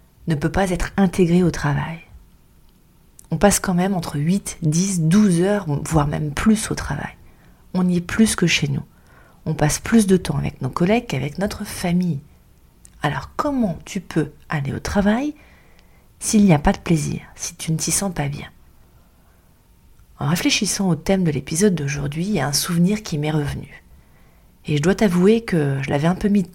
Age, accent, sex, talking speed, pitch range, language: 30-49, French, female, 190 wpm, 145-190 Hz, French